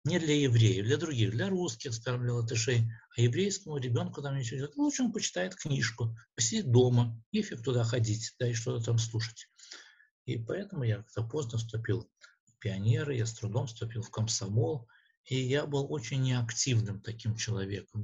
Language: Russian